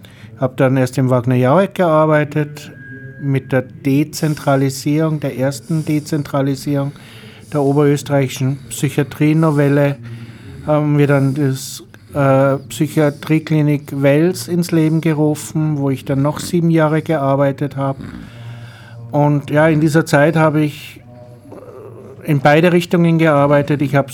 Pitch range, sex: 130-150 Hz, male